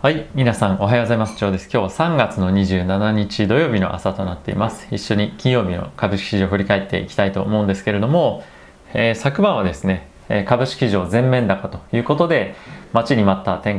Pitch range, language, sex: 95-125 Hz, Japanese, male